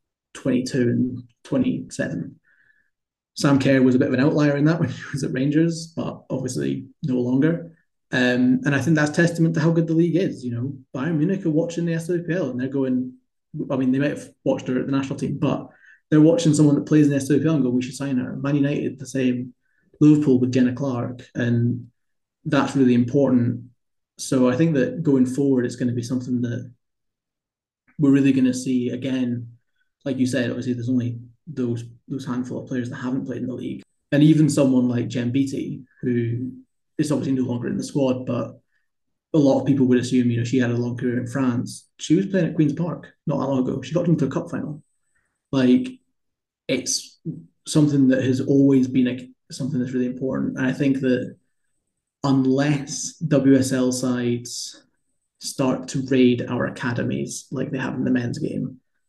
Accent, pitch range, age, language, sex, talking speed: British, 125-145 Hz, 20-39, English, male, 200 wpm